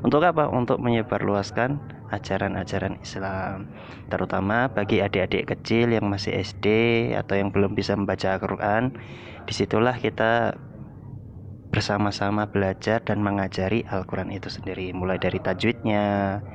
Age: 20-39